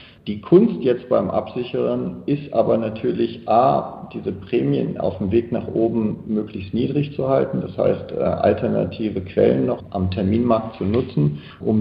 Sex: male